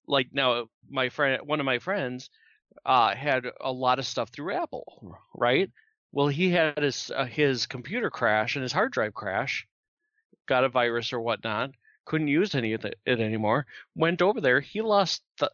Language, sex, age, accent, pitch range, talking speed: English, male, 40-59, American, 125-165 Hz, 180 wpm